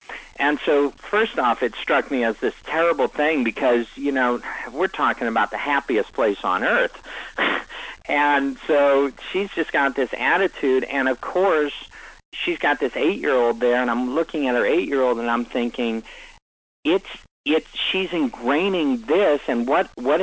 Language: English